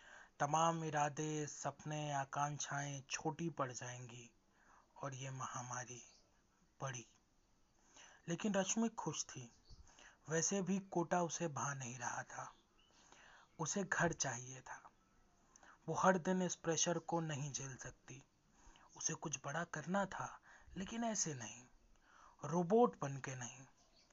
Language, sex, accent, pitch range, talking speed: Hindi, male, native, 130-165 Hz, 115 wpm